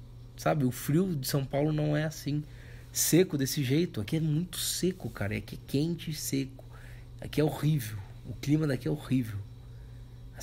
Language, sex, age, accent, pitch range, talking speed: Portuguese, male, 20-39, Brazilian, 120-150 Hz, 185 wpm